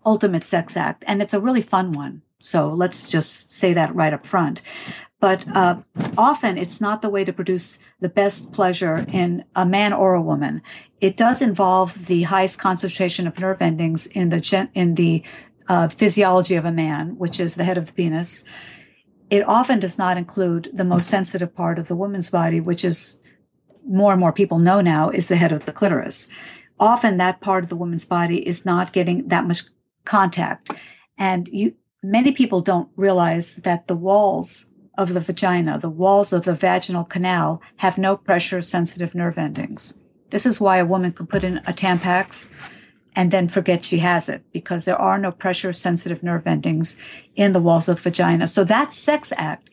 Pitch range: 175-195 Hz